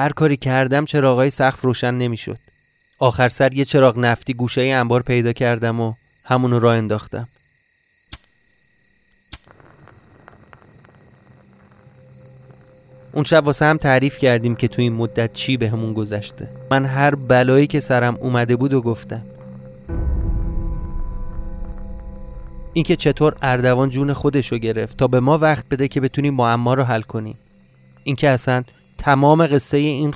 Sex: male